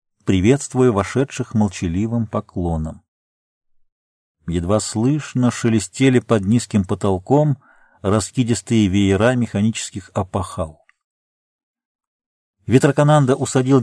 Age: 50-69